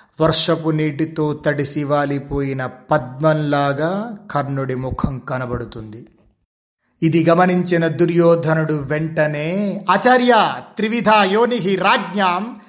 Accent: native